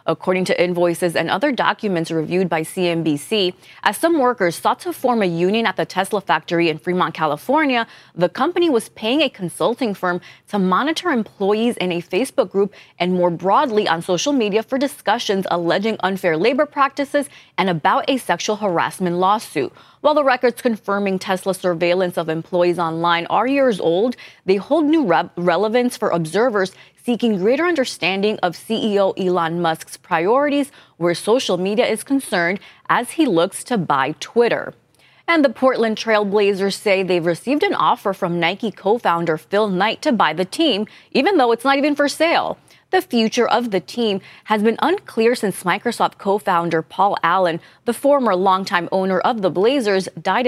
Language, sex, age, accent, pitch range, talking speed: English, female, 20-39, American, 175-240 Hz, 165 wpm